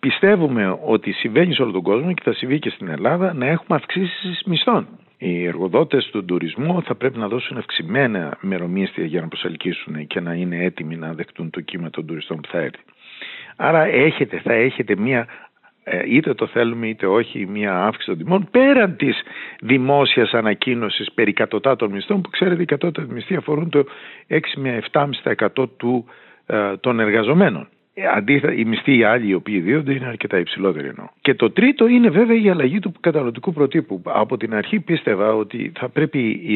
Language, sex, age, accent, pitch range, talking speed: Greek, male, 50-69, native, 105-165 Hz, 170 wpm